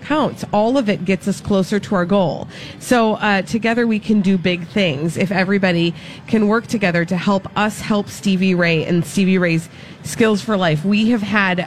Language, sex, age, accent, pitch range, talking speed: English, female, 30-49, American, 170-215 Hz, 195 wpm